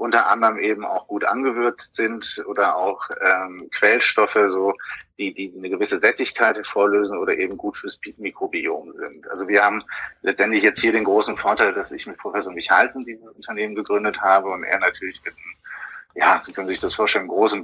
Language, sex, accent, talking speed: German, male, German, 180 wpm